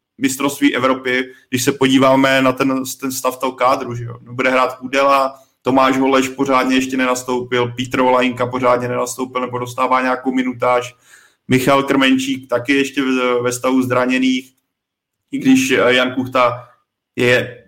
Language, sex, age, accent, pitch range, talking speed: Czech, male, 20-39, native, 125-135 Hz, 140 wpm